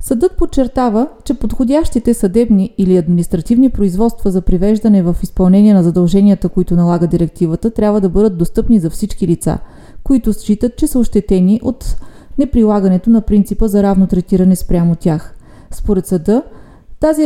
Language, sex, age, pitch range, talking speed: Bulgarian, female, 30-49, 185-235 Hz, 145 wpm